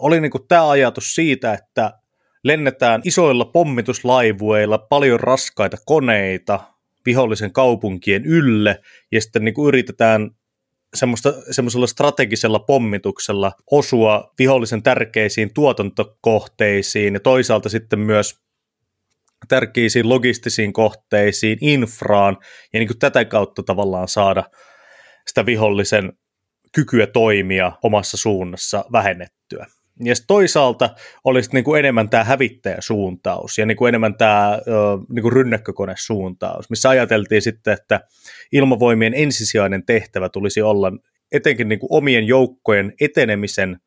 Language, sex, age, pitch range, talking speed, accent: Finnish, male, 30-49, 105-130 Hz, 105 wpm, native